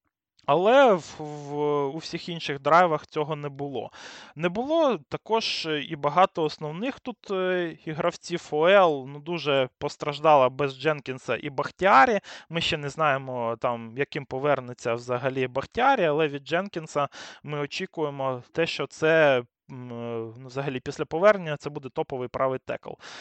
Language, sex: Russian, male